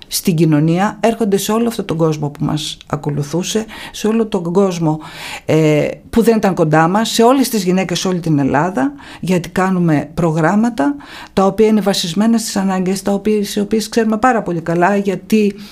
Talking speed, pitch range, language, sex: 170 wpm, 165-220 Hz, Greek, female